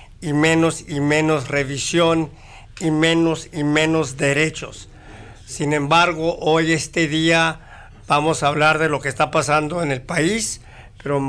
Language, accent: English, Mexican